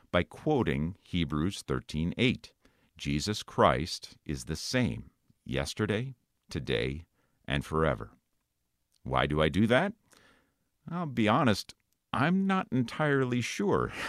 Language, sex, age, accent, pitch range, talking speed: English, male, 50-69, American, 75-120 Hz, 110 wpm